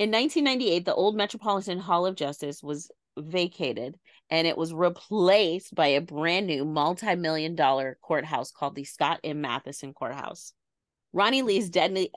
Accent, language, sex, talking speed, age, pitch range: American, English, female, 150 wpm, 30-49, 150-195 Hz